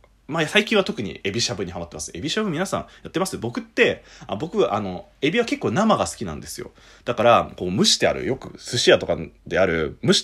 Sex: male